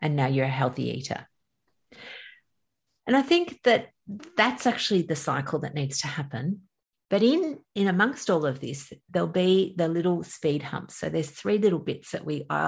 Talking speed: 185 wpm